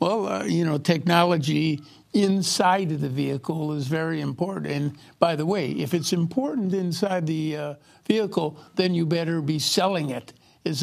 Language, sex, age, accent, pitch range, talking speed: English, male, 60-79, American, 150-180 Hz, 165 wpm